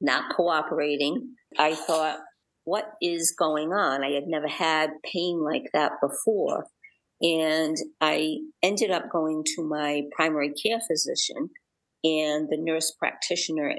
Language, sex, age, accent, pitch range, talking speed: English, female, 50-69, American, 155-205 Hz, 130 wpm